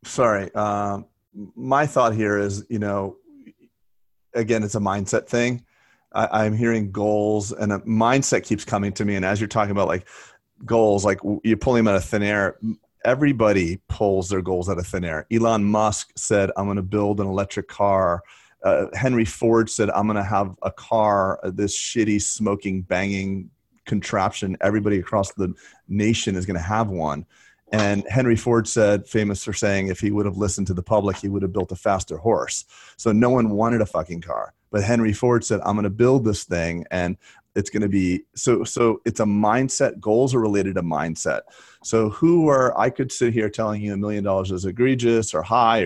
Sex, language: male, English